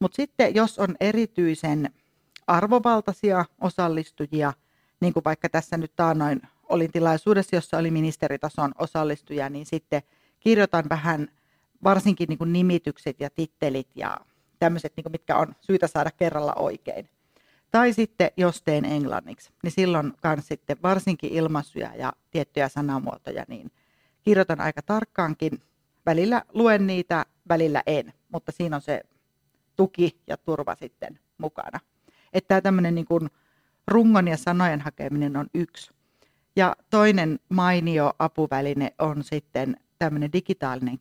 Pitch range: 145-180 Hz